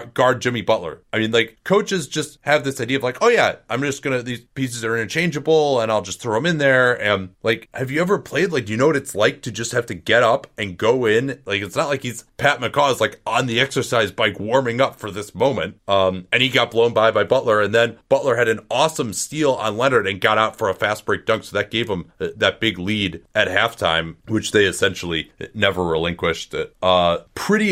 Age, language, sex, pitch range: 30-49, English, male, 110-135 Hz